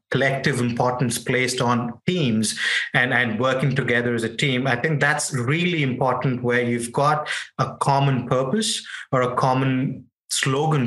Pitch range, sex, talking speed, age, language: 120-140 Hz, male, 150 wpm, 30-49, English